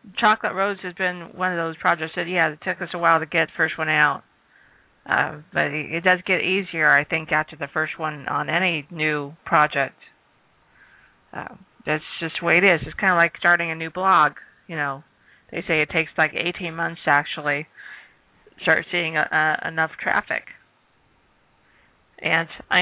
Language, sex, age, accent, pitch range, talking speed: English, female, 40-59, American, 155-180 Hz, 185 wpm